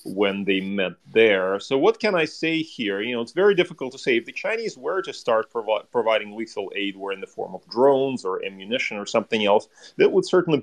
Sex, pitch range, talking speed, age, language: male, 120-175 Hz, 225 wpm, 30-49, English